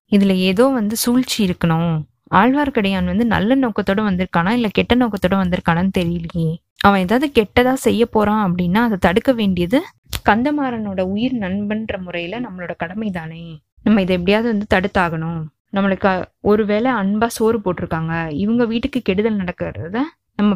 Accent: native